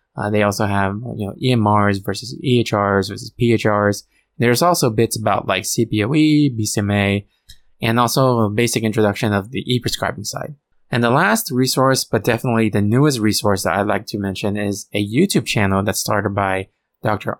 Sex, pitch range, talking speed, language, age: male, 105-120 Hz, 170 wpm, English, 20-39